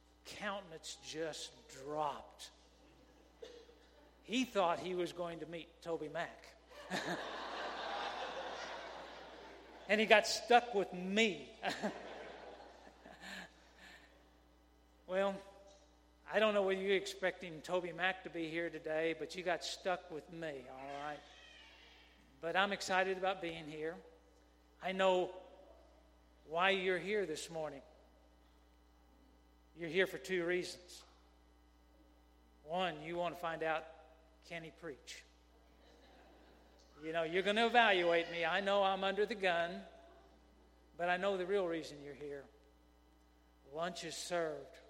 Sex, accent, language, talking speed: male, American, English, 120 wpm